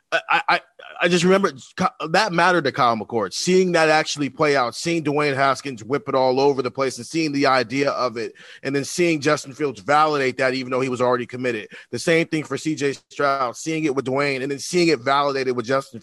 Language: English